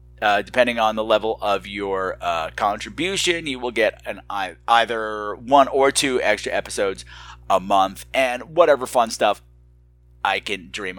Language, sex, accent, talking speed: English, male, American, 160 wpm